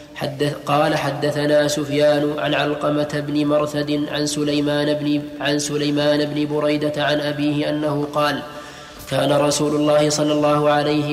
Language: Arabic